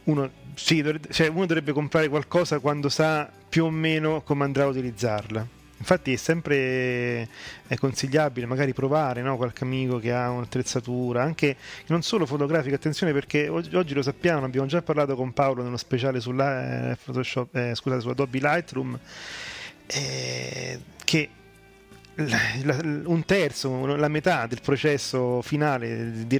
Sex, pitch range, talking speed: male, 120-145 Hz, 155 wpm